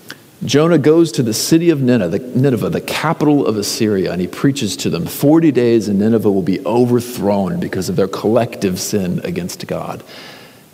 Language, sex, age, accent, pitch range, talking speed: English, male, 50-69, American, 105-155 Hz, 185 wpm